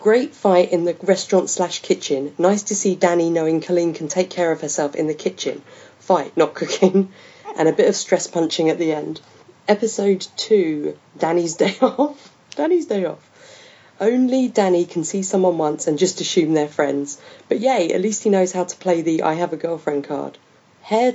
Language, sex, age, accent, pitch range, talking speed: English, female, 40-59, British, 160-205 Hz, 195 wpm